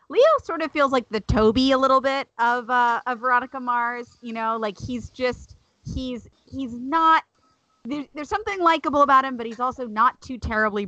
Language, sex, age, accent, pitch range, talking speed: English, female, 30-49, American, 190-260 Hz, 190 wpm